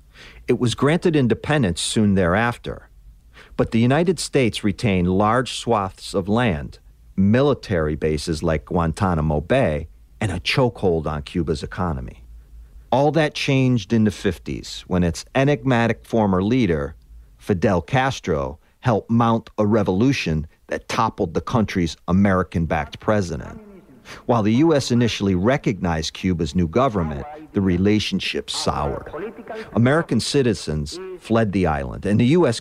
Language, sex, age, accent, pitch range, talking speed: English, male, 50-69, American, 90-130 Hz, 125 wpm